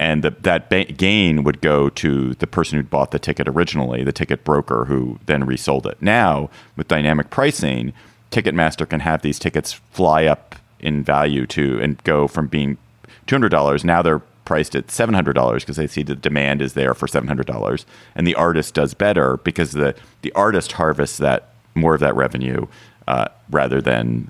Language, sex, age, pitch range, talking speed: English, male, 40-59, 70-100 Hz, 195 wpm